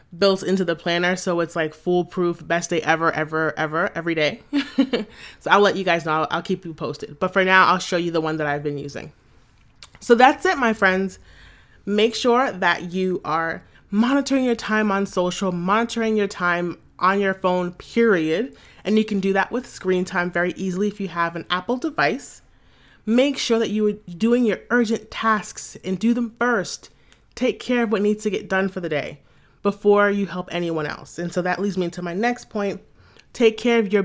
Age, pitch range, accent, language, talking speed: 30-49, 175-225 Hz, American, English, 210 wpm